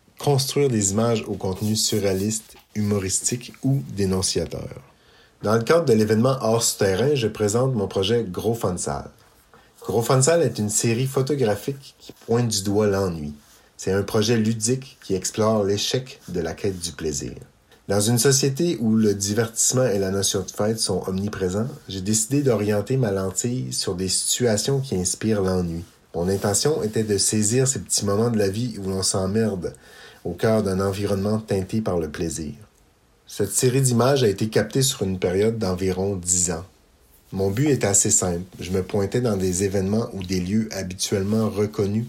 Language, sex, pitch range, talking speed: French, male, 95-115 Hz, 170 wpm